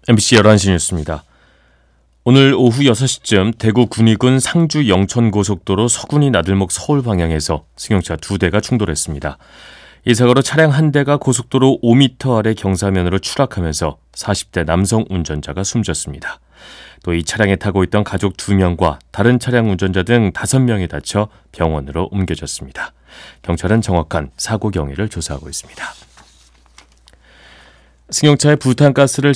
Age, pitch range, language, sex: 30-49, 85-125 Hz, Korean, male